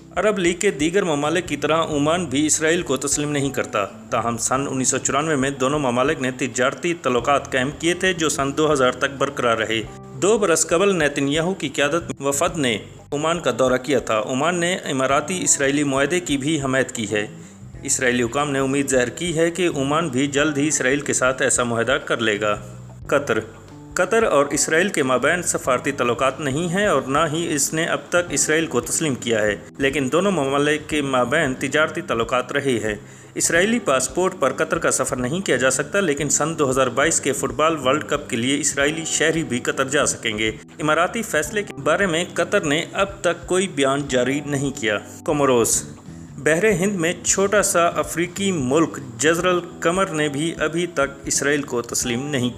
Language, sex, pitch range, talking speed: Urdu, male, 130-165 Hz, 190 wpm